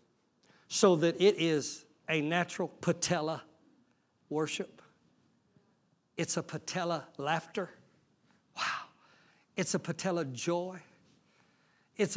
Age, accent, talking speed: 60-79, American, 90 wpm